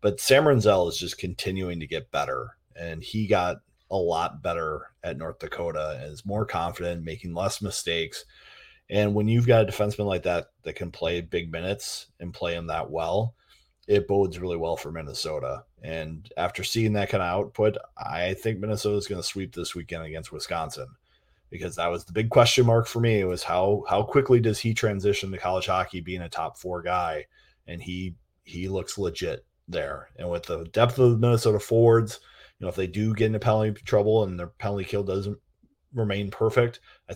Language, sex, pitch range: English, male, 90-115 Hz